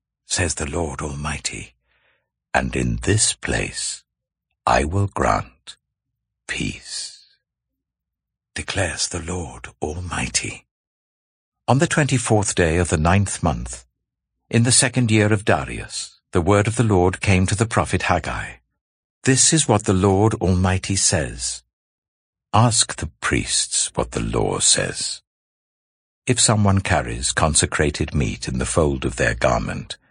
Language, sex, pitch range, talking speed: English, male, 75-115 Hz, 130 wpm